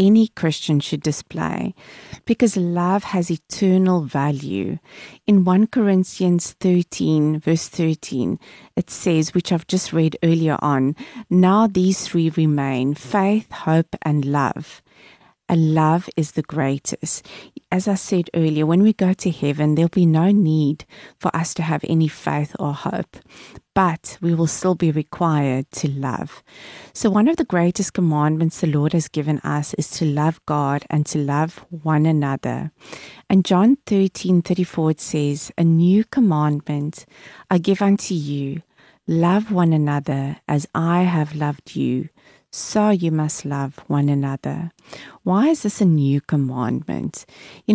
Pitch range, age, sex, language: 150-185 Hz, 30-49, female, Japanese